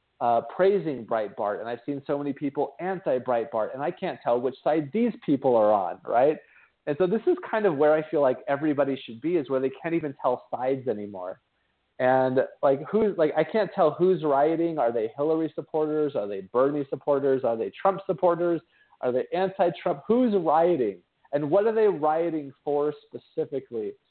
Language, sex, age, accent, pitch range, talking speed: English, male, 40-59, American, 130-175 Hz, 190 wpm